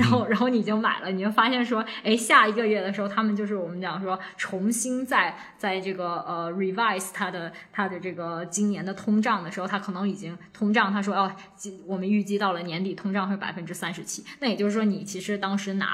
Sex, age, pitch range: female, 20-39, 190-220 Hz